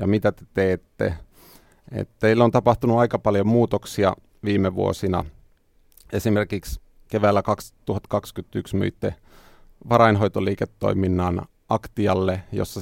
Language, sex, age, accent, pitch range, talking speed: Finnish, male, 30-49, native, 95-110 Hz, 90 wpm